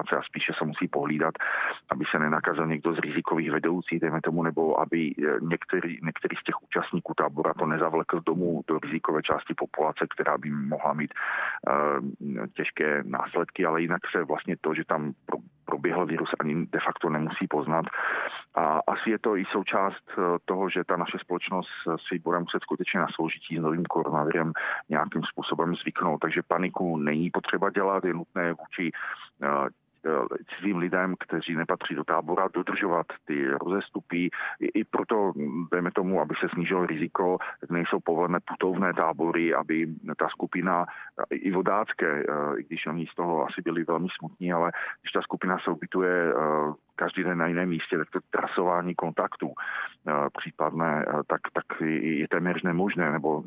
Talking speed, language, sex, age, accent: 155 wpm, Czech, male, 40-59, native